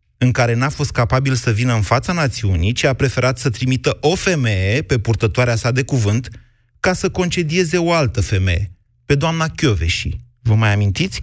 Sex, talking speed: male, 180 wpm